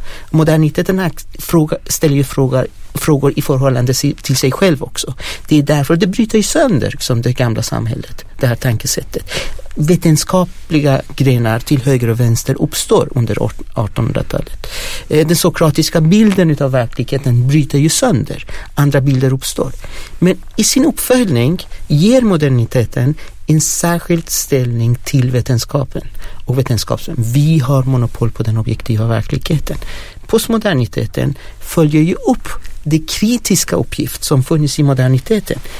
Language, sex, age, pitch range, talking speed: English, male, 60-79, 115-155 Hz, 125 wpm